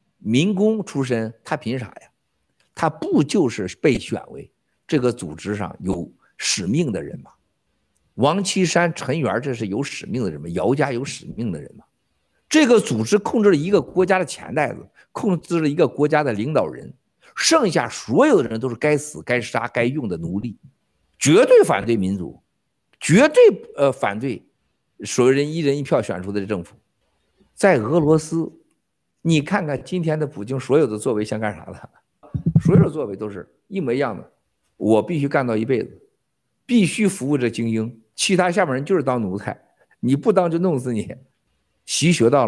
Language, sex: Chinese, male